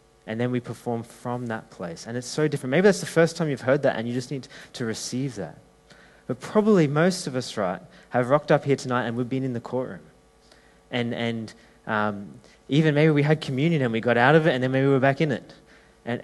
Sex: male